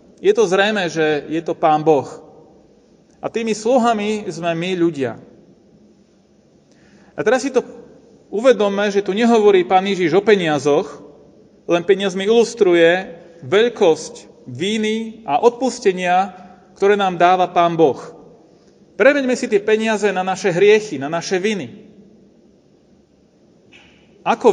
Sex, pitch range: male, 175-220 Hz